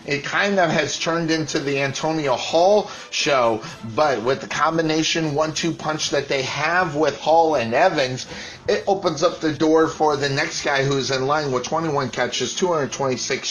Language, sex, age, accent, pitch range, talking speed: English, male, 30-49, American, 135-160 Hz, 175 wpm